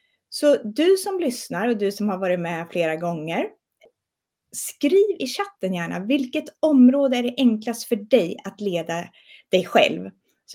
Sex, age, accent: female, 30-49, Swedish